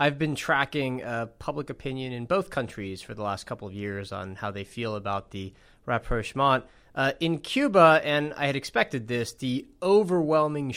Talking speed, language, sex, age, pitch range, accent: 180 wpm, English, male, 30-49, 110-135 Hz, American